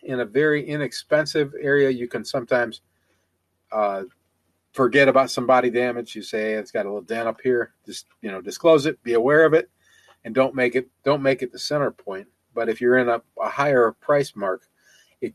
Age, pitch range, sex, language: 40-59, 110-135 Hz, male, English